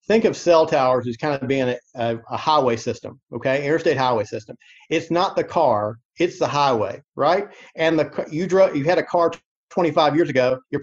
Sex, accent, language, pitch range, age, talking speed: male, American, English, 135-185 Hz, 50-69, 200 wpm